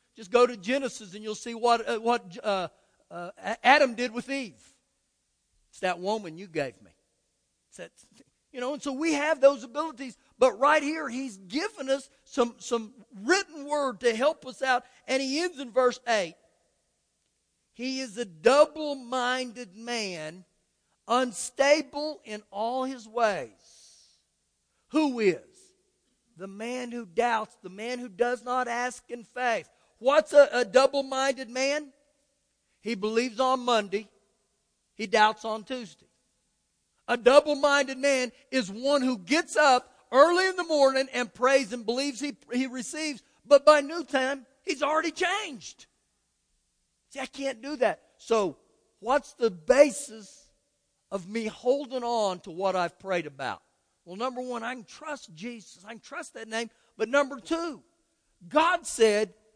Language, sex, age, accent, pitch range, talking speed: English, male, 50-69, American, 225-280 Hz, 150 wpm